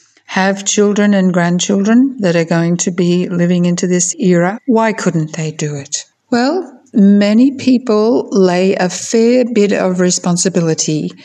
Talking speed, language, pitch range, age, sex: 145 wpm, English, 170-210 Hz, 60-79, female